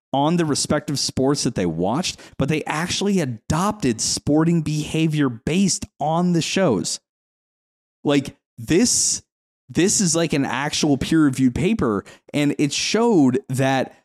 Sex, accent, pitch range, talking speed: male, American, 105-155 Hz, 130 wpm